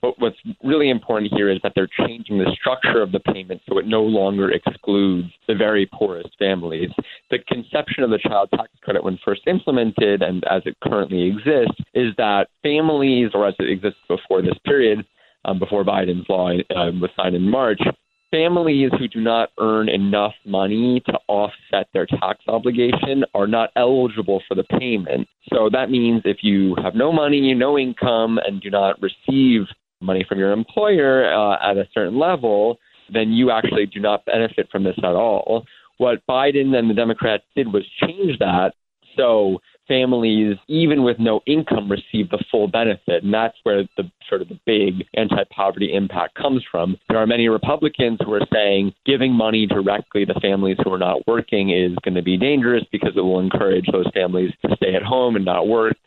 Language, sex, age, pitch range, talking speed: English, male, 30-49, 95-125 Hz, 185 wpm